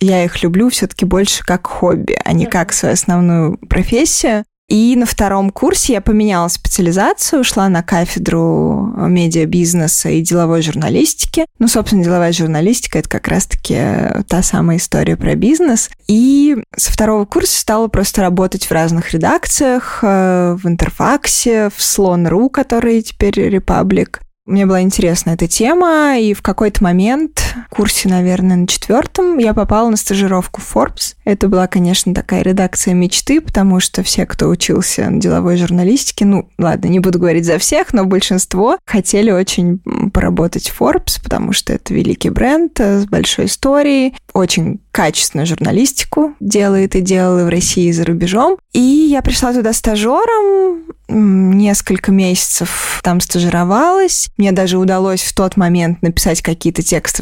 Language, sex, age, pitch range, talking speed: Russian, female, 20-39, 175-230 Hz, 150 wpm